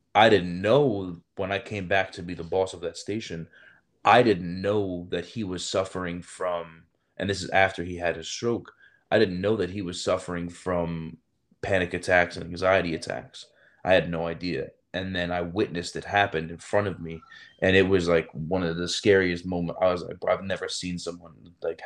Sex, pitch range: male, 85-100 Hz